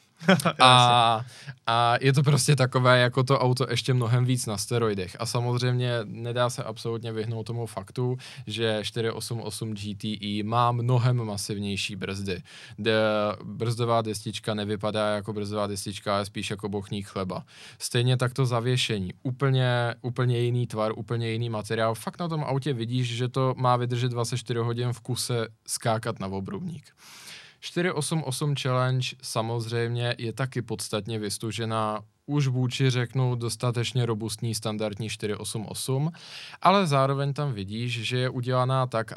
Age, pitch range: 20-39, 110-125 Hz